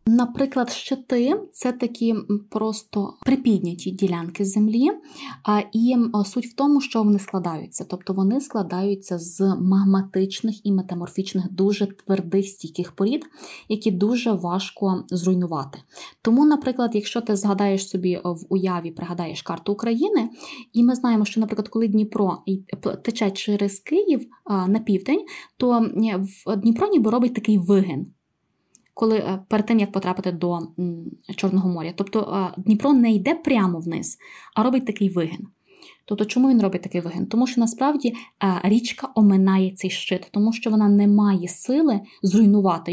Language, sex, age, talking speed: Ukrainian, female, 20-39, 135 wpm